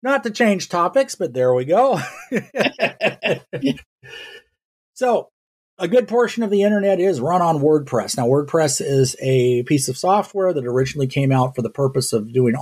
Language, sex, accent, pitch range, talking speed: English, male, American, 120-150 Hz, 165 wpm